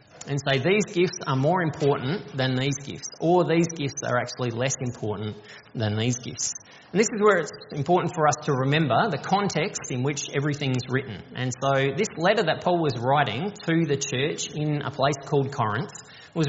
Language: English